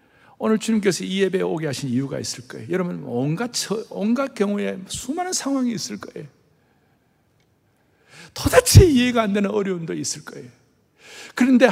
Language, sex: Korean, male